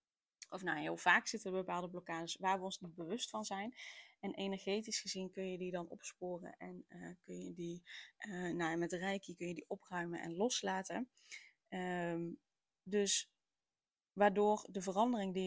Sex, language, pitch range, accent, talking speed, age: female, Dutch, 185-220 Hz, Dutch, 175 wpm, 20-39